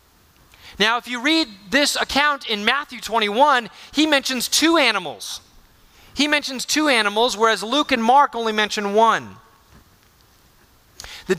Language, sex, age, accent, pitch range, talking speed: English, male, 30-49, American, 205-260 Hz, 130 wpm